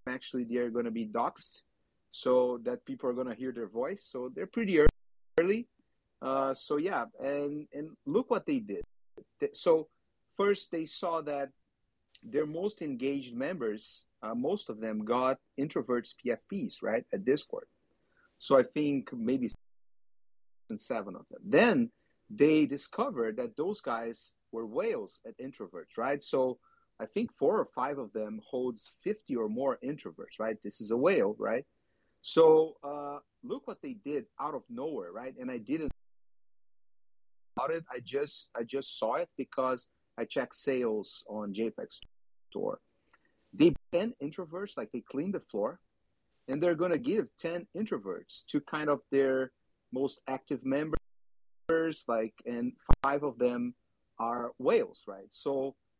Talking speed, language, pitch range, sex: 155 wpm, English, 115-165 Hz, male